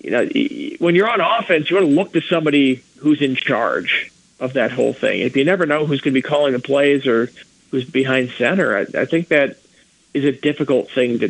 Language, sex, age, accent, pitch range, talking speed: English, male, 40-59, American, 130-165 Hz, 230 wpm